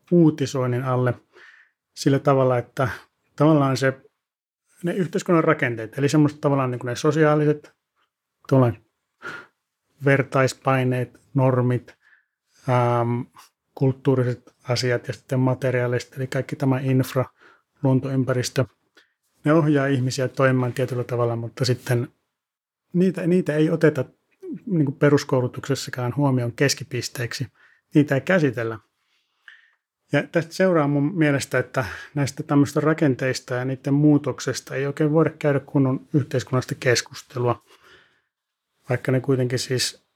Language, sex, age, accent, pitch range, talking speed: Finnish, male, 30-49, native, 125-150 Hz, 110 wpm